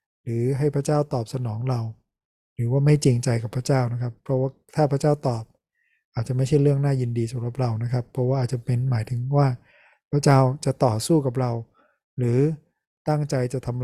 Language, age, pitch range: Thai, 20-39, 125-145 Hz